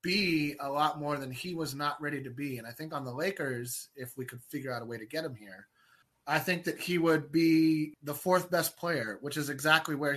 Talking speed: 250 wpm